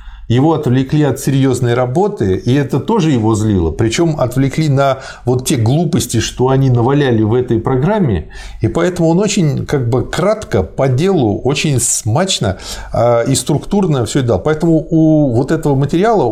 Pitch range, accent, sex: 100-160 Hz, native, male